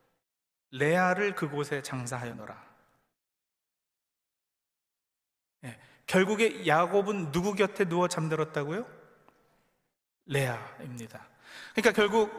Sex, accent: male, native